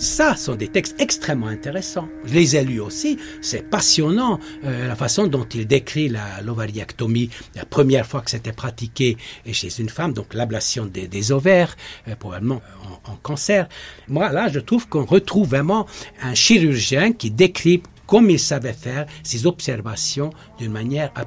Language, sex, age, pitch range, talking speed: French, male, 60-79, 120-195 Hz, 170 wpm